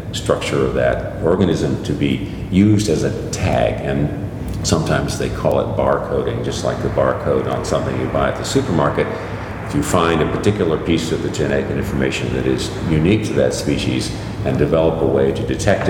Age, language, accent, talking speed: 50-69, English, American, 185 wpm